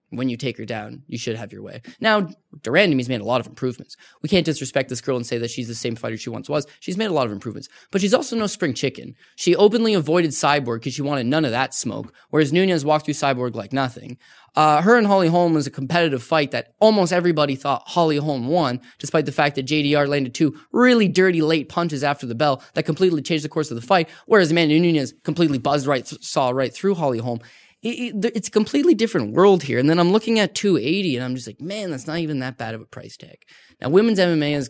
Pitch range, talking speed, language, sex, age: 125-175 Hz, 250 wpm, English, male, 10-29